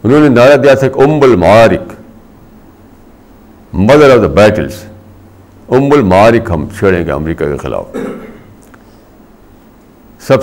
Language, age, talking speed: Urdu, 60-79, 120 wpm